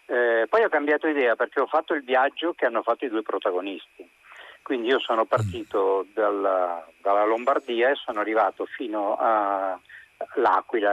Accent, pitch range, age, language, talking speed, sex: native, 105-150 Hz, 40-59, Italian, 155 wpm, male